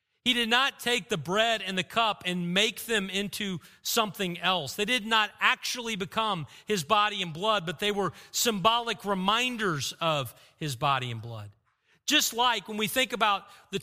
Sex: male